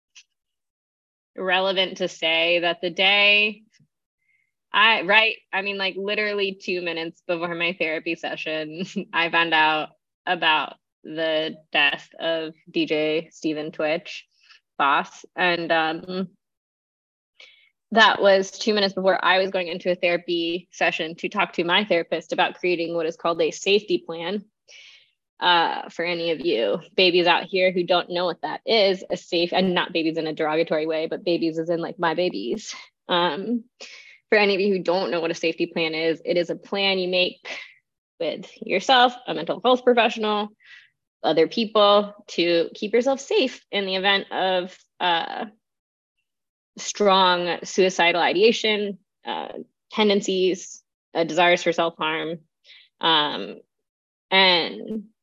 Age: 20-39